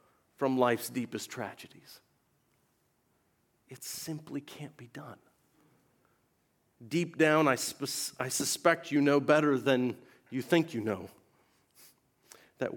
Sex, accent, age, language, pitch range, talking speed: male, American, 50-69, English, 115-150 Hz, 110 wpm